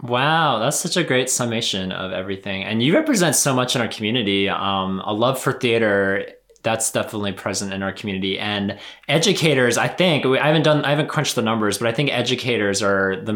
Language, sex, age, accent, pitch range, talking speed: English, male, 20-39, American, 95-130 Hz, 200 wpm